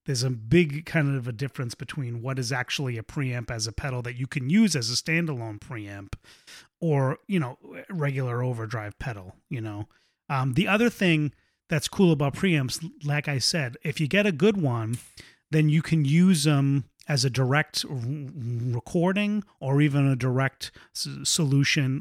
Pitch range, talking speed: 120-150 Hz, 170 wpm